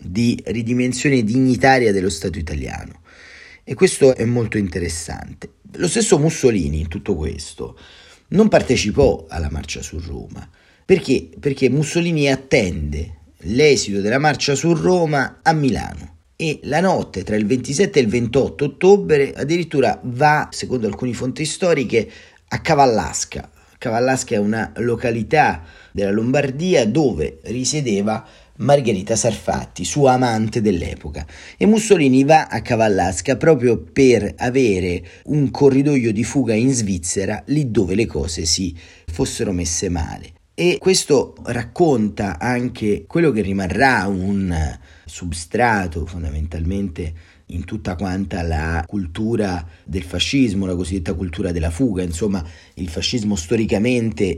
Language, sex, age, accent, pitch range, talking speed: Italian, male, 40-59, native, 85-130 Hz, 125 wpm